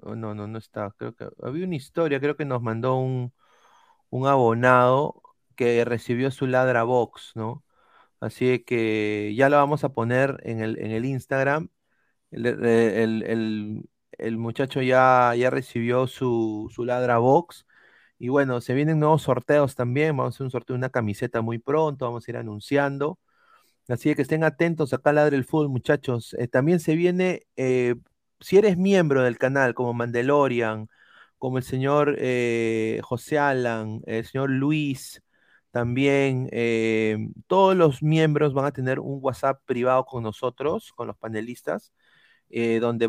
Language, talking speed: Spanish, 155 wpm